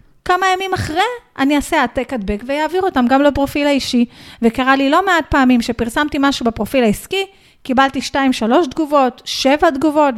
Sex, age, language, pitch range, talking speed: female, 30-49, Hebrew, 235-280 Hz, 155 wpm